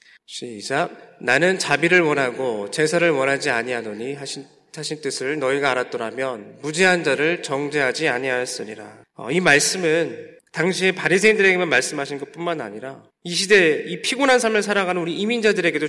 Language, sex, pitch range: Korean, male, 155-220 Hz